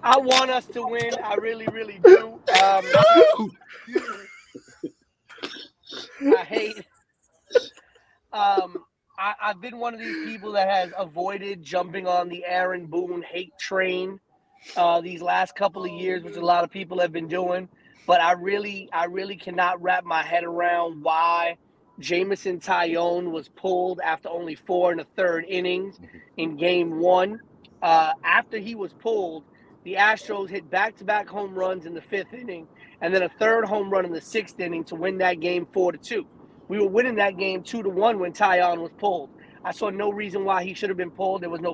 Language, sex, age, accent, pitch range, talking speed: English, male, 30-49, American, 175-210 Hz, 180 wpm